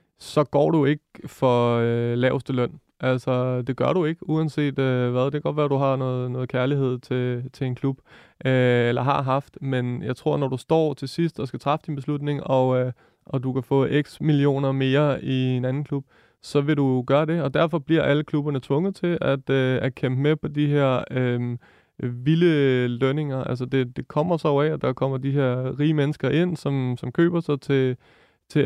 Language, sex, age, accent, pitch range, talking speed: Danish, male, 30-49, native, 130-150 Hz, 215 wpm